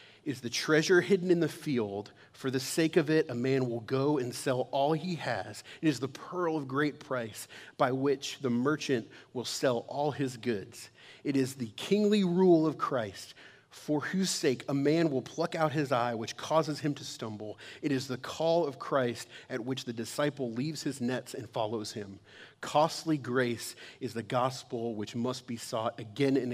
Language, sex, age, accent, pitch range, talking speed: English, male, 40-59, American, 120-145 Hz, 195 wpm